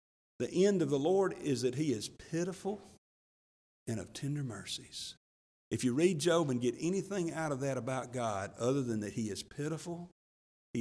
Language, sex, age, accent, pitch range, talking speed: English, male, 50-69, American, 115-170 Hz, 185 wpm